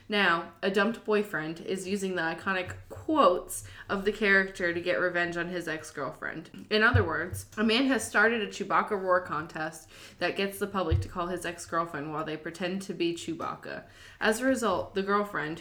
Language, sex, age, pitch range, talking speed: English, female, 20-39, 170-200 Hz, 185 wpm